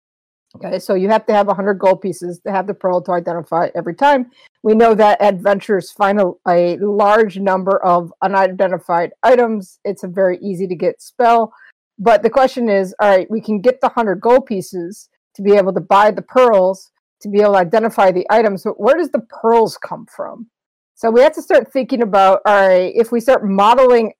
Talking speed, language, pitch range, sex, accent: 205 wpm, English, 195-250 Hz, female, American